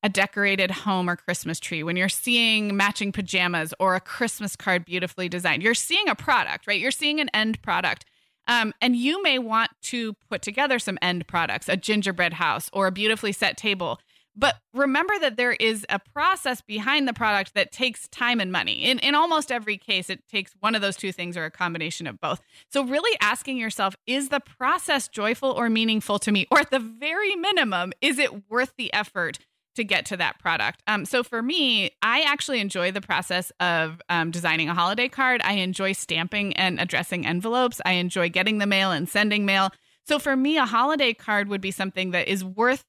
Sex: female